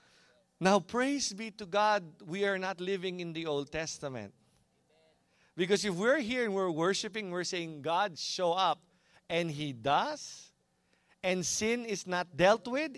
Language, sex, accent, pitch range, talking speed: English, male, Filipino, 135-195 Hz, 155 wpm